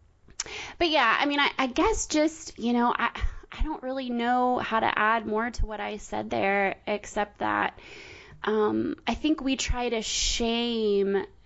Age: 20-39